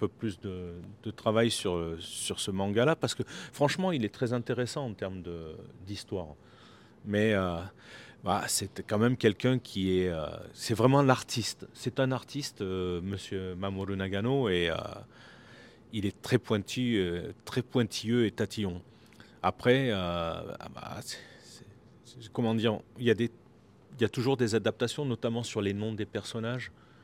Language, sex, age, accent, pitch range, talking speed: French, male, 40-59, French, 100-120 Hz, 165 wpm